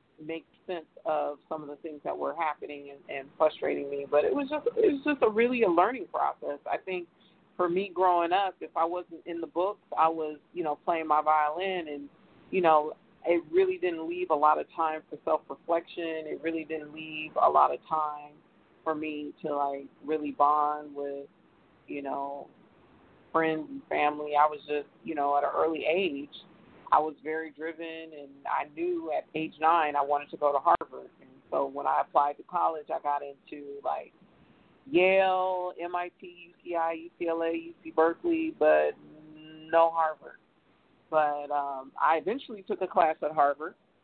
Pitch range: 150-175 Hz